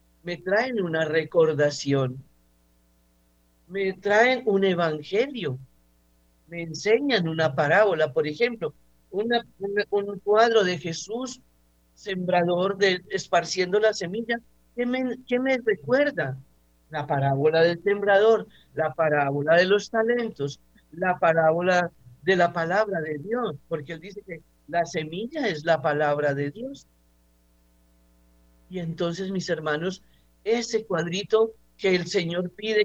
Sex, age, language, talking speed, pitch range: male, 50-69, Spanish, 120 wpm, 135-200 Hz